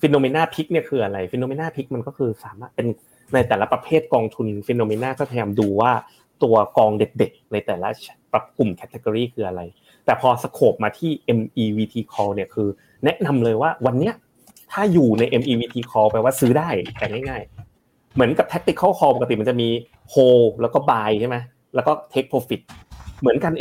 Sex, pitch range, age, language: male, 110-140 Hz, 30-49, Thai